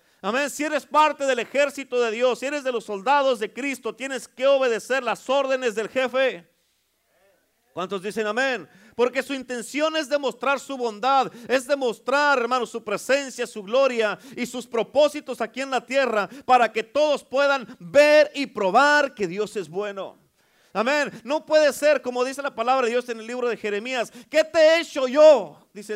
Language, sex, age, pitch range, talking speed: Spanish, male, 50-69, 220-285 Hz, 180 wpm